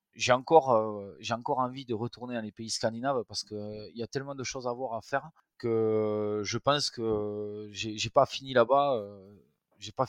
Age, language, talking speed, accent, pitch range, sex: 20-39, French, 220 wpm, French, 105-130 Hz, male